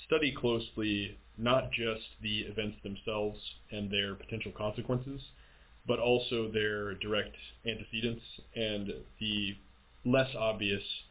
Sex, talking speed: male, 110 wpm